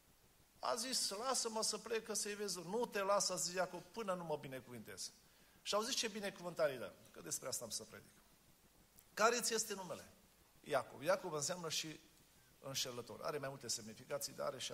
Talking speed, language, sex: 180 wpm, Romanian, male